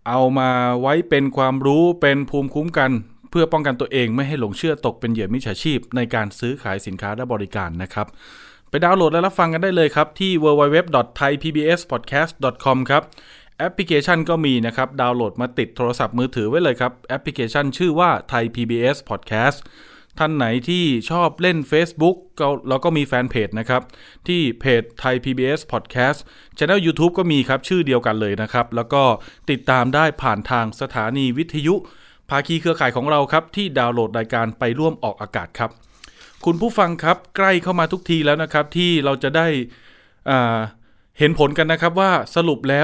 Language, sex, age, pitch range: Thai, male, 20-39, 120-160 Hz